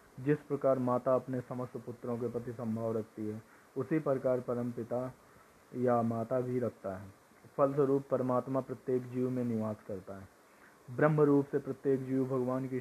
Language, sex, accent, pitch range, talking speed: Hindi, male, native, 120-135 Hz, 130 wpm